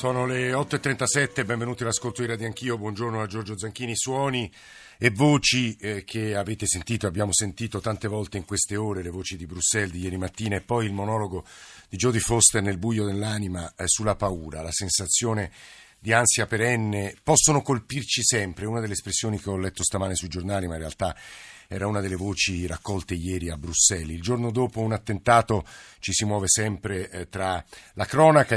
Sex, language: male, Italian